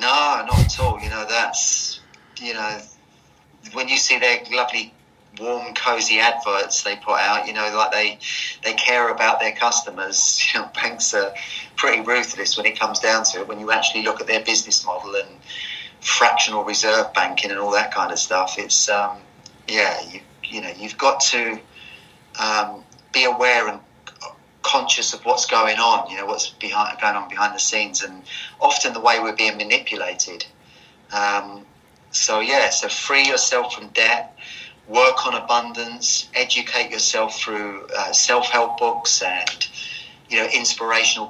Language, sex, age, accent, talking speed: English, male, 30-49, British, 165 wpm